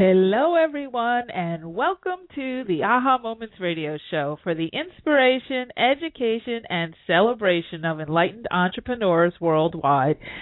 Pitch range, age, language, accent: 190-250 Hz, 40-59, English, American